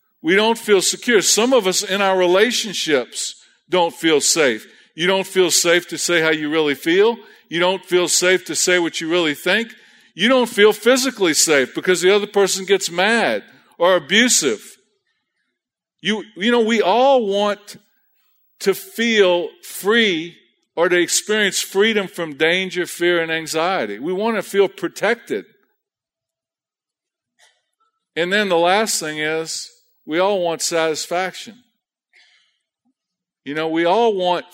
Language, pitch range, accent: English, 170-235 Hz, American